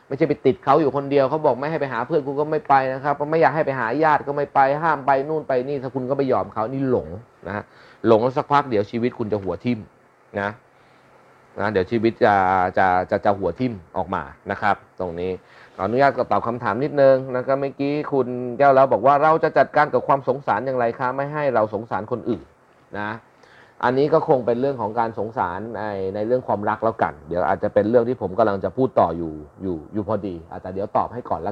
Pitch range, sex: 105-140 Hz, male